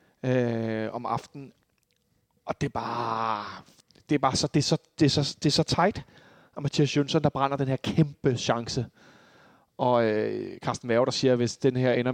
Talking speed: 175 wpm